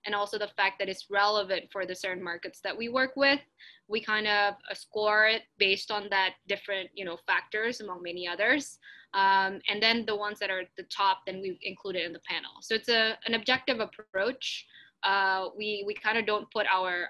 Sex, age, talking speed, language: female, 10-29, 215 wpm, English